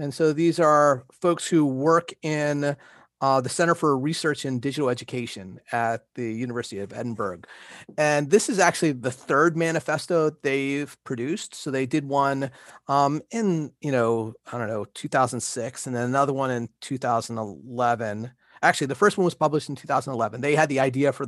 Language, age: English, 30-49